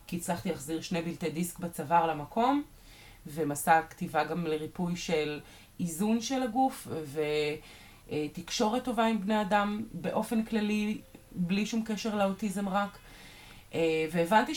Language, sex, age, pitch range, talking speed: Hebrew, female, 20-39, 160-230 Hz, 120 wpm